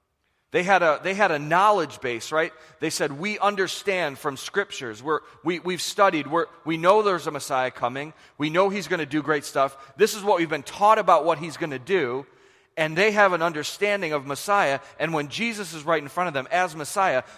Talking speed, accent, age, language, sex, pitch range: 220 wpm, American, 40-59, English, male, 140-190 Hz